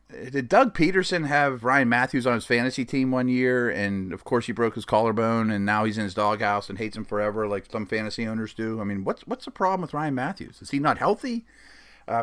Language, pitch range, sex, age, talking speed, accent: English, 105-135 Hz, male, 30-49, 235 wpm, American